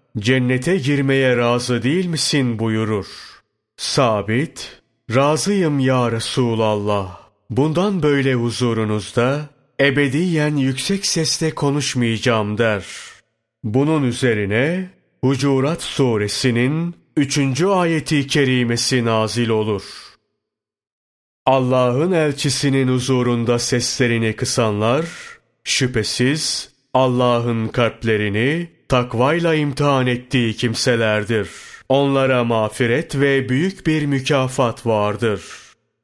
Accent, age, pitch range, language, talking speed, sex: native, 40-59, 115-140 Hz, Turkish, 75 wpm, male